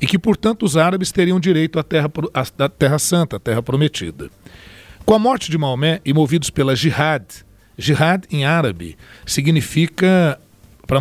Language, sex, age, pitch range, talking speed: Portuguese, male, 60-79, 130-170 Hz, 155 wpm